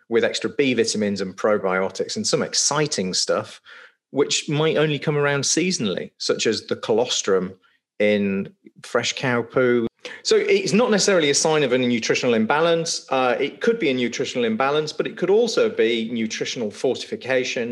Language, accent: English, British